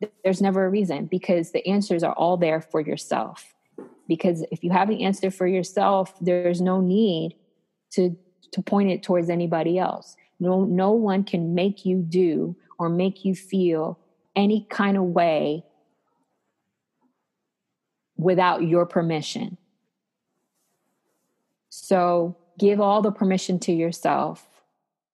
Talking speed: 135 wpm